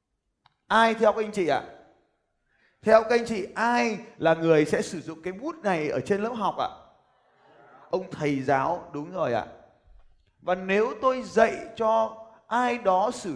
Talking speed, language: 170 wpm, Vietnamese